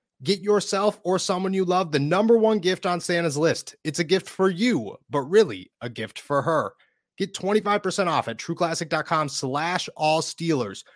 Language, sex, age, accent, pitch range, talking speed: English, male, 30-49, American, 135-175 Hz, 170 wpm